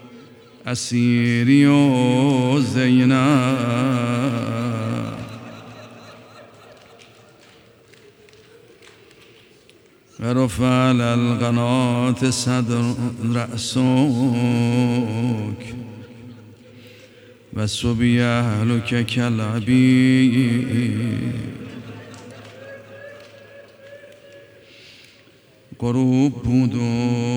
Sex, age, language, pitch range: male, 50-69, Persian, 120-130 Hz